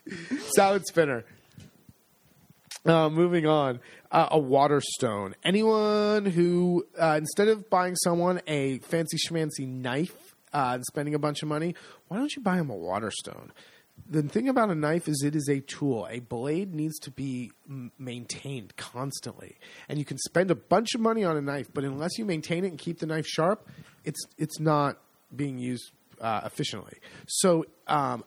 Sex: male